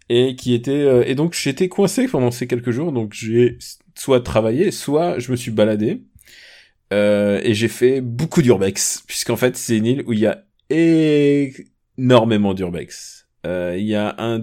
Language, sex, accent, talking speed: French, male, French, 185 wpm